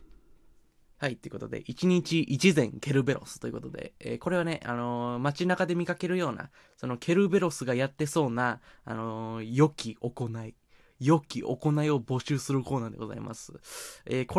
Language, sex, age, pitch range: Japanese, male, 20-39, 120-160 Hz